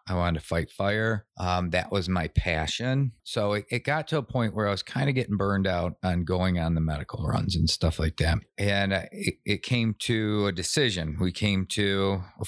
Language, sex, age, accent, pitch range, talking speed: English, male, 40-59, American, 90-105 Hz, 220 wpm